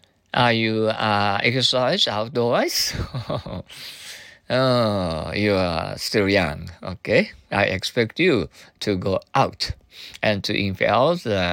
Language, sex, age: Japanese, male, 50-69